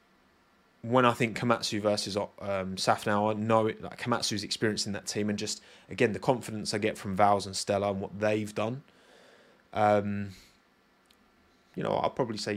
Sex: male